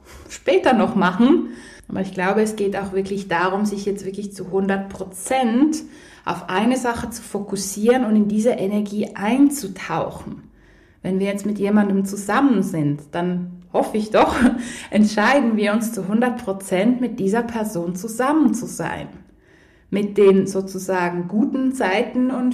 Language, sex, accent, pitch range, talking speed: German, female, German, 195-240 Hz, 145 wpm